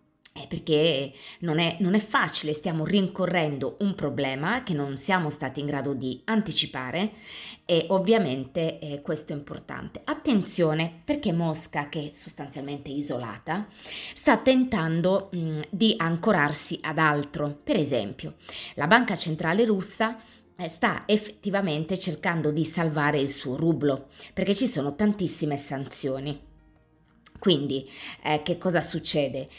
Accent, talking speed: native, 120 wpm